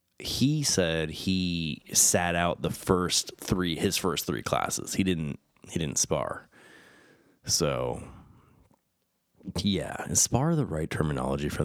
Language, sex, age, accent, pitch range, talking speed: English, male, 30-49, American, 75-100 Hz, 125 wpm